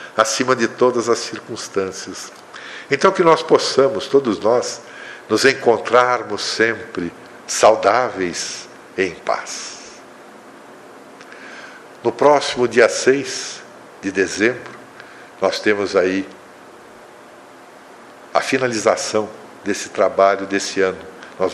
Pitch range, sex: 100-140 Hz, male